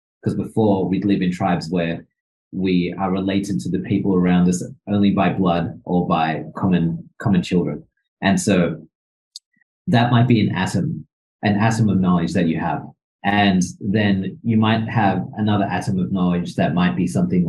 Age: 30-49